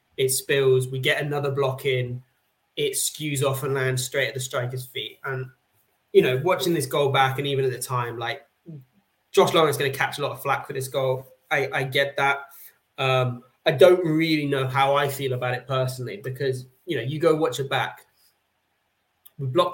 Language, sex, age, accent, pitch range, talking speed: English, male, 20-39, British, 130-145 Hz, 205 wpm